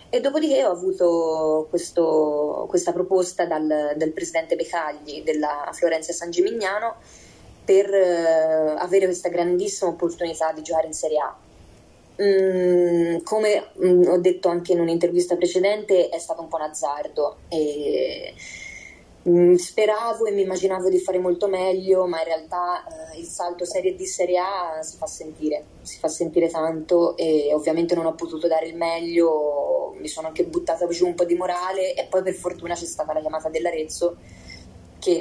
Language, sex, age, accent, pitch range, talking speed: Italian, female, 20-39, native, 160-185 Hz, 160 wpm